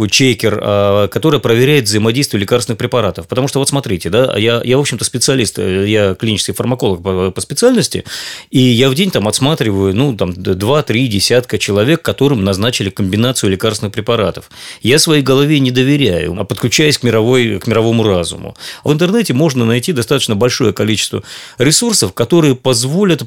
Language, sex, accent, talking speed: Russian, male, native, 150 wpm